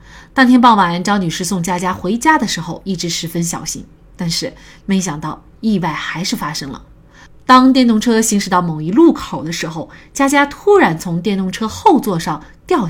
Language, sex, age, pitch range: Chinese, female, 30-49, 170-260 Hz